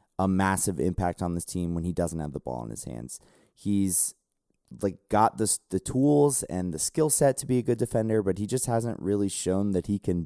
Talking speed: 230 wpm